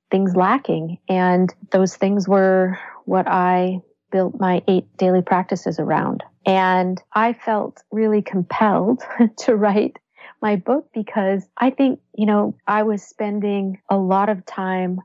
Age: 40-59